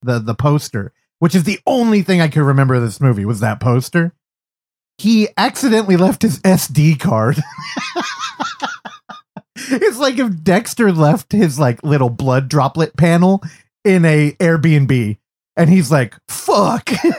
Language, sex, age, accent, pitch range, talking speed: English, male, 30-49, American, 135-205 Hz, 145 wpm